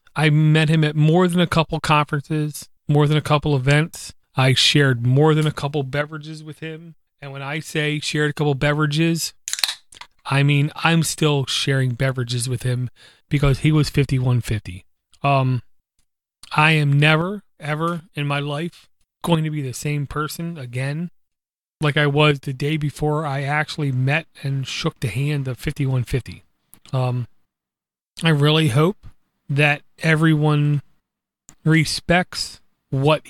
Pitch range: 135-160 Hz